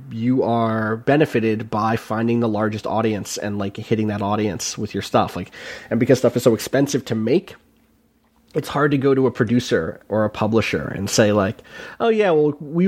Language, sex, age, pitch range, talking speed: English, male, 30-49, 110-145 Hz, 195 wpm